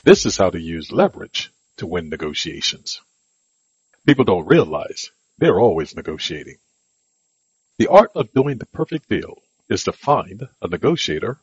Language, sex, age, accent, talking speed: English, male, 60-79, American, 140 wpm